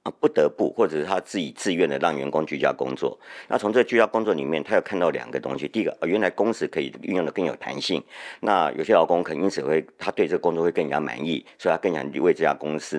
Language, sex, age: Chinese, male, 50-69